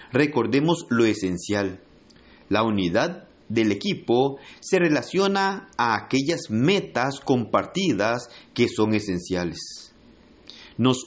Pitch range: 110-145 Hz